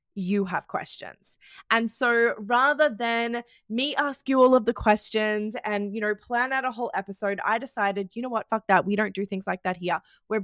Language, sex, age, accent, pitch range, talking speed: English, female, 20-39, Australian, 195-235 Hz, 215 wpm